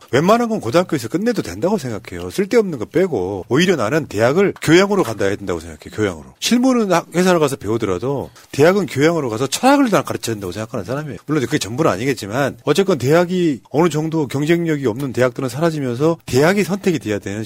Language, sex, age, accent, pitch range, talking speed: English, male, 40-59, Korean, 110-175 Hz, 165 wpm